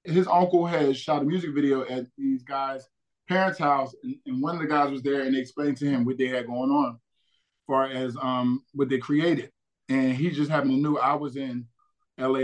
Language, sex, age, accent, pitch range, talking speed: English, male, 20-39, American, 130-150 Hz, 220 wpm